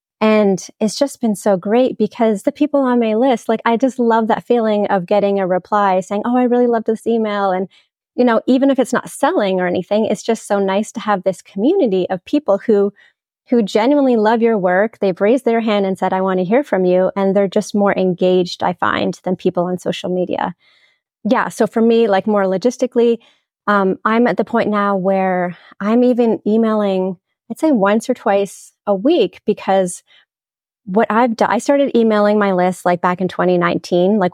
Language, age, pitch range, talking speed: English, 30-49, 190-240 Hz, 205 wpm